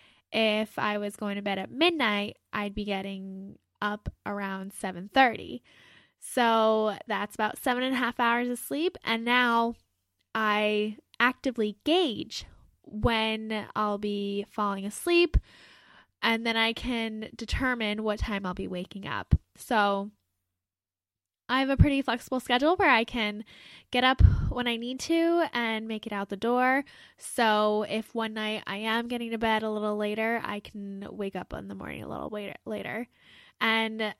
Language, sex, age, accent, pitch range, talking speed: English, female, 10-29, American, 210-255 Hz, 160 wpm